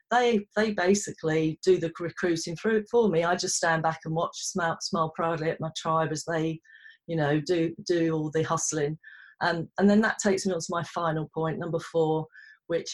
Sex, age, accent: female, 40-59, British